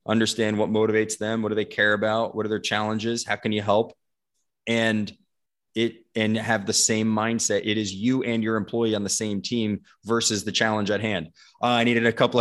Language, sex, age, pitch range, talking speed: English, male, 20-39, 105-115 Hz, 215 wpm